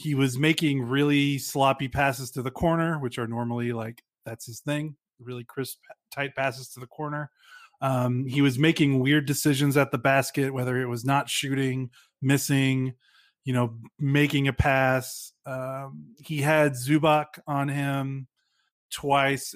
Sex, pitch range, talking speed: male, 130-150 Hz, 155 wpm